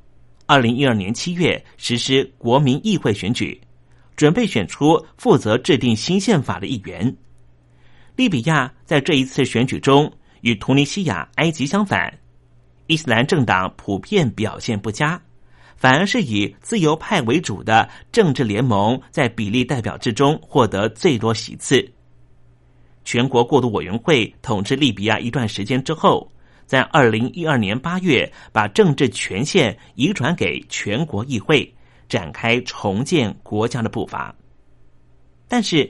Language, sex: Chinese, male